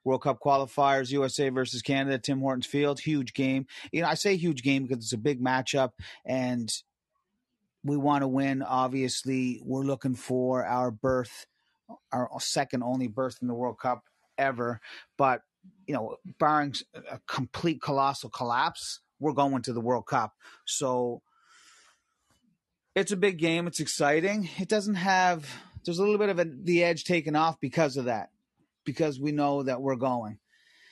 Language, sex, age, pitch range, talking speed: English, male, 30-49, 130-160 Hz, 165 wpm